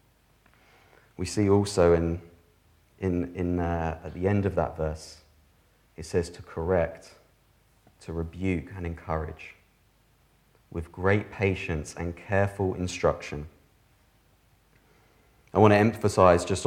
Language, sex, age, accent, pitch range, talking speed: English, male, 30-49, British, 85-100 Hz, 115 wpm